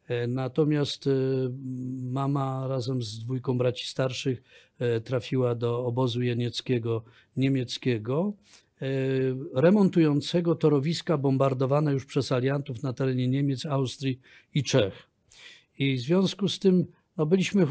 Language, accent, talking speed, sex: Polish, native, 100 wpm, male